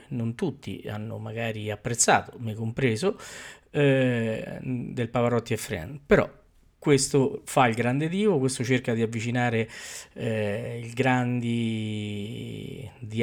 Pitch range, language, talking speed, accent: 115-135 Hz, Italian, 120 wpm, native